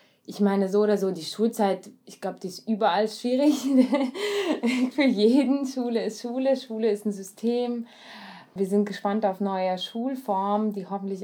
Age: 20-39